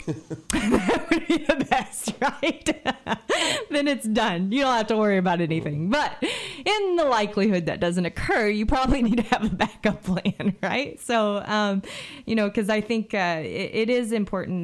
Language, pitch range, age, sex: English, 165-220 Hz, 20-39, female